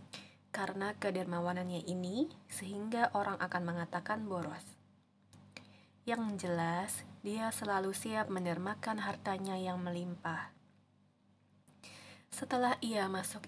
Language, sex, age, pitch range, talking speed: Indonesian, female, 20-39, 175-215 Hz, 90 wpm